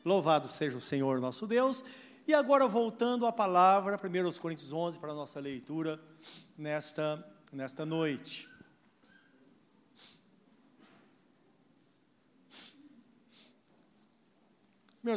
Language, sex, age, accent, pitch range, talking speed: Portuguese, male, 50-69, Brazilian, 145-205 Hz, 85 wpm